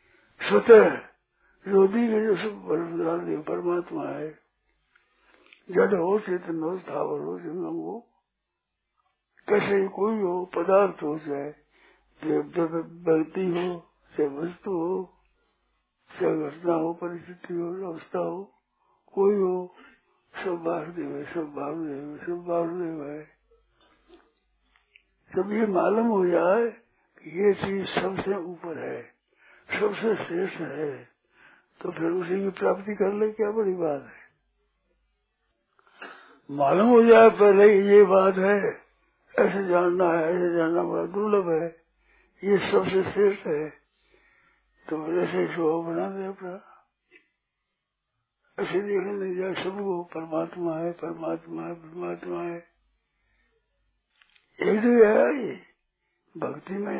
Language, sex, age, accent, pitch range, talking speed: Hindi, male, 60-79, native, 165-200 Hz, 115 wpm